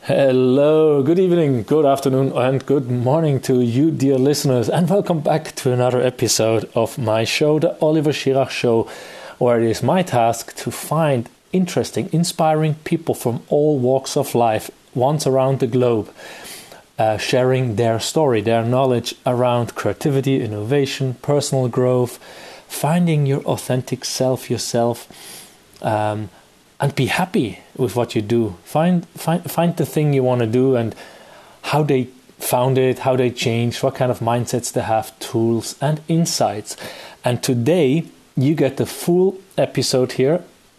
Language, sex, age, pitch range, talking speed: English, male, 30-49, 120-150 Hz, 150 wpm